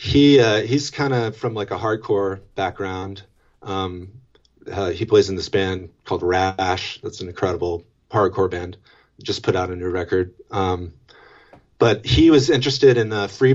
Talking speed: 170 wpm